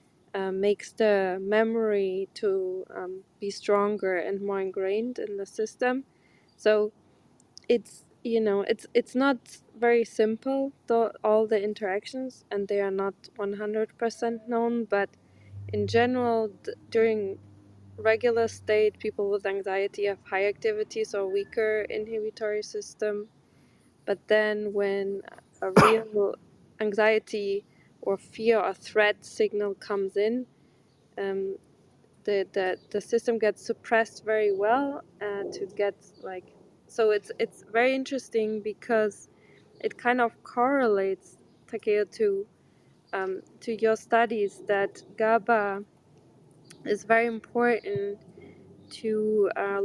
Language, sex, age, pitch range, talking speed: English, female, 20-39, 195-230 Hz, 120 wpm